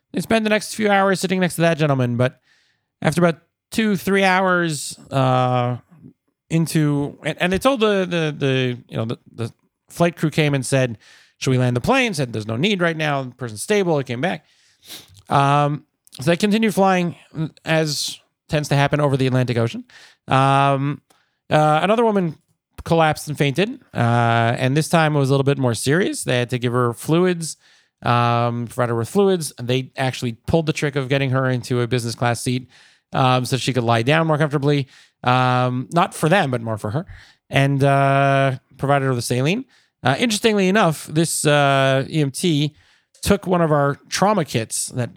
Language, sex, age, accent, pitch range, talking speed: English, male, 30-49, American, 125-165 Hz, 190 wpm